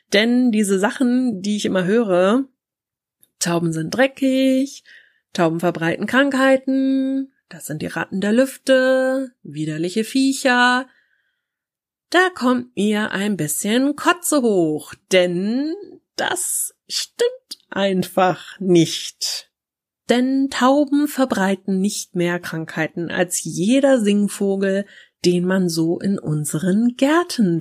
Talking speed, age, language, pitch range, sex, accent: 105 wpm, 30-49, German, 185-265 Hz, female, German